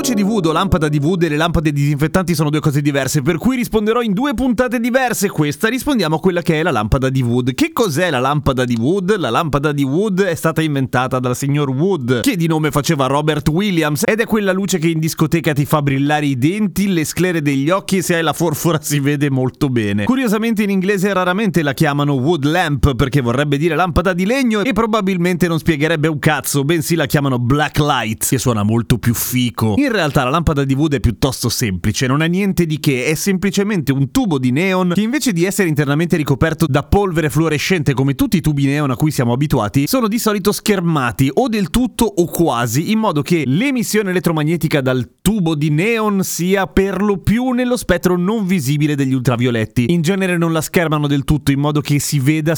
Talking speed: 215 wpm